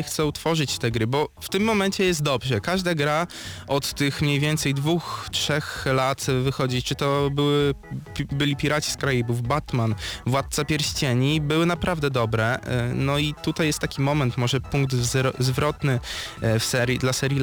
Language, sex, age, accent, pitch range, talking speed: Polish, male, 20-39, native, 125-150 Hz, 160 wpm